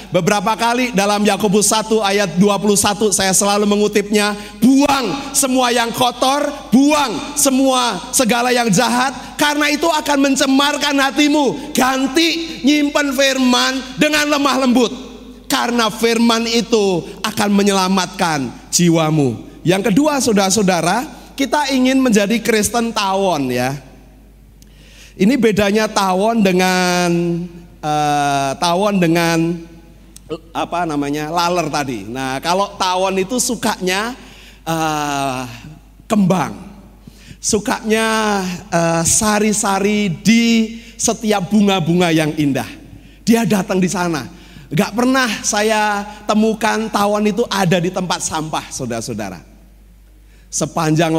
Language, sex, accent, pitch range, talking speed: Indonesian, male, native, 170-240 Hz, 100 wpm